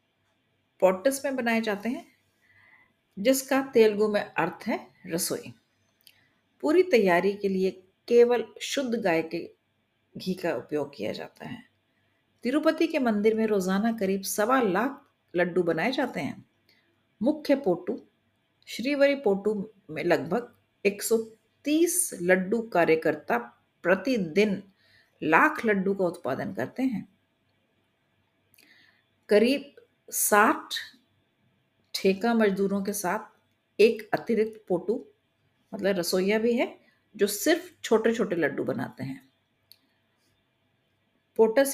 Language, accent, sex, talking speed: Hindi, native, female, 105 wpm